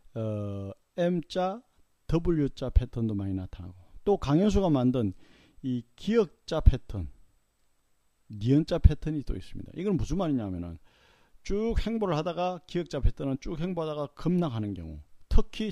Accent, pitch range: native, 105-165 Hz